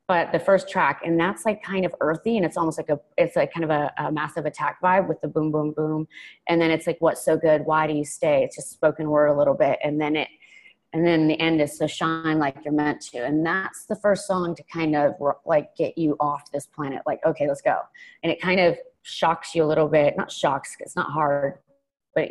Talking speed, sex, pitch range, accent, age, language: 255 wpm, female, 150-180 Hz, American, 30-49, English